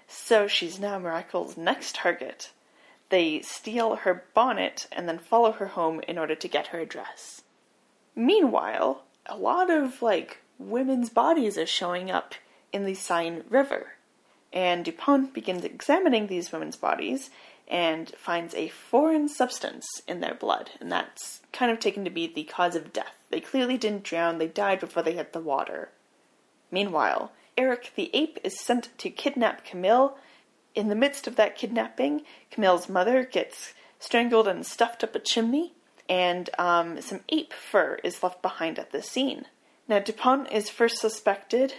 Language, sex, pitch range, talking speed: English, female, 175-265 Hz, 160 wpm